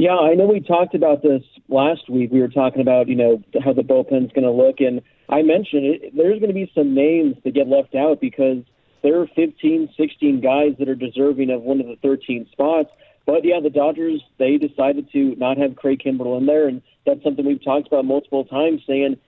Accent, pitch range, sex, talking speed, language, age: American, 135-155 Hz, male, 225 wpm, English, 40-59